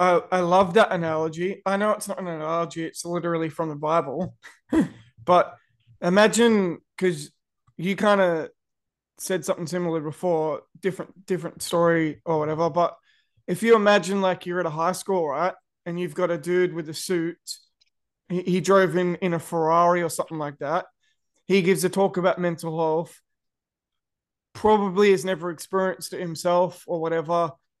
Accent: Australian